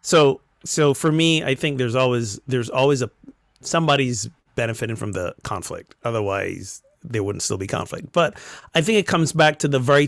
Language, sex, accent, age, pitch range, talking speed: English, male, American, 30-49, 115-140 Hz, 185 wpm